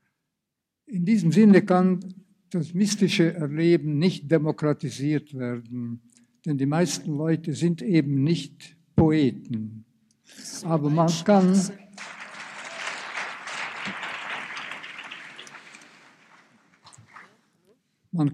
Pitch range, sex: 140-175 Hz, male